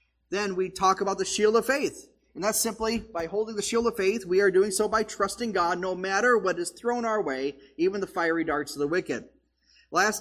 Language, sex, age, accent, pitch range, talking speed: English, male, 30-49, American, 165-215 Hz, 230 wpm